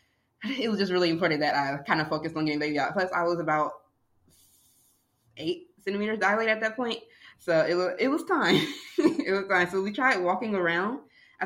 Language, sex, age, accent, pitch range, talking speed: English, female, 20-39, American, 160-205 Hz, 205 wpm